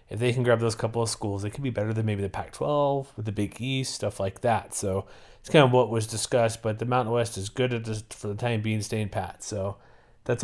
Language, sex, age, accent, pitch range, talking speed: English, male, 30-49, American, 105-120 Hz, 260 wpm